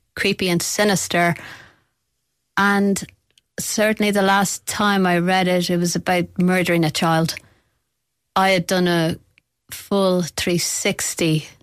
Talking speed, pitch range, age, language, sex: 120 wpm, 175-205 Hz, 30-49, English, female